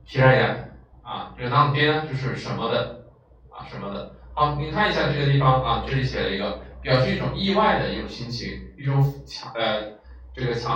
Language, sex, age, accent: Chinese, male, 20-39, native